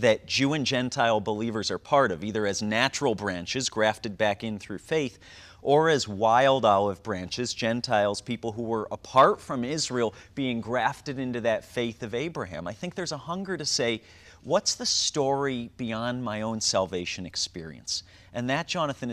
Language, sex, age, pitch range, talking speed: English, male, 40-59, 110-145 Hz, 170 wpm